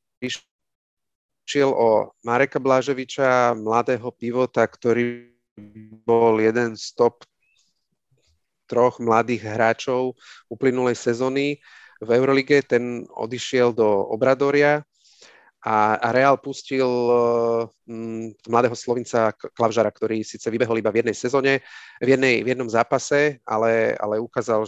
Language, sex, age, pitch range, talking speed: Slovak, male, 30-49, 115-135 Hz, 105 wpm